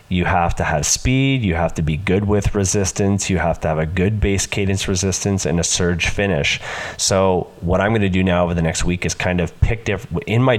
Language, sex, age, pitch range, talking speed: English, male, 30-49, 85-100 Hz, 245 wpm